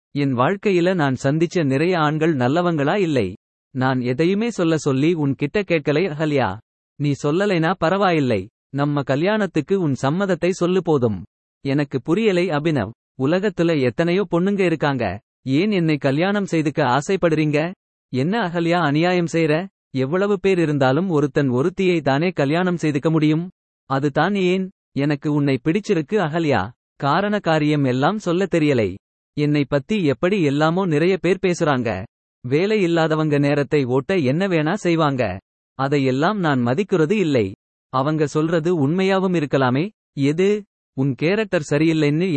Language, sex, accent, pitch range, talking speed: Tamil, male, native, 135-175 Hz, 120 wpm